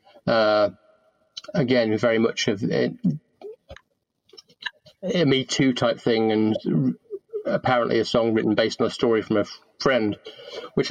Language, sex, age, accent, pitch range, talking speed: English, male, 30-49, British, 115-150 Hz, 125 wpm